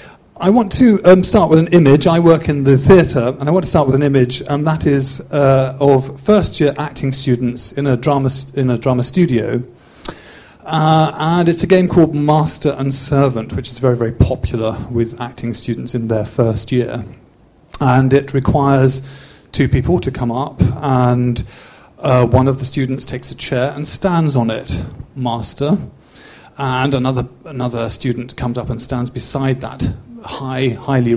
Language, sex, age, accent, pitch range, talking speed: English, male, 40-59, British, 120-145 Hz, 180 wpm